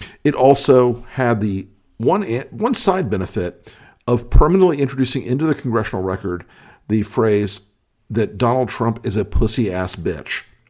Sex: male